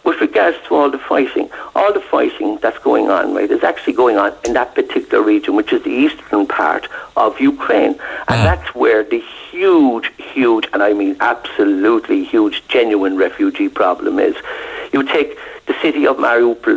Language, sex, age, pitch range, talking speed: English, male, 60-79, 320-425 Hz, 175 wpm